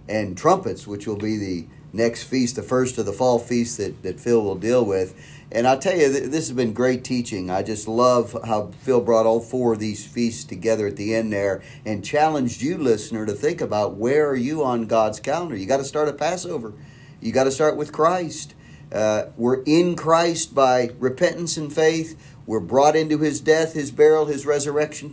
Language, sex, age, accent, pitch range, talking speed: English, male, 40-59, American, 120-155 Hz, 210 wpm